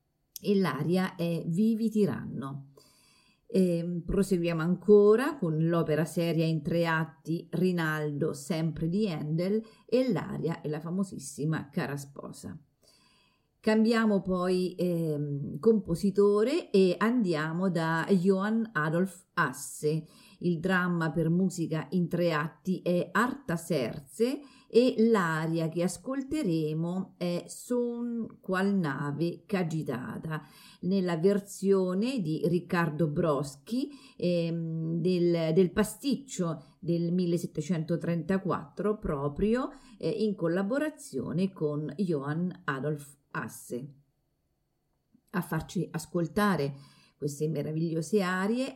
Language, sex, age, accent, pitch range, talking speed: Italian, female, 40-59, native, 160-205 Hz, 95 wpm